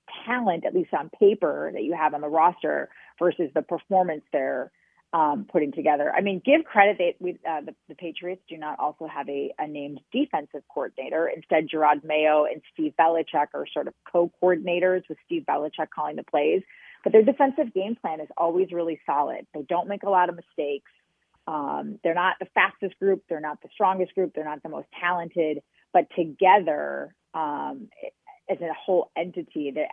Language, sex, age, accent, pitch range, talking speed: English, female, 30-49, American, 155-200 Hz, 190 wpm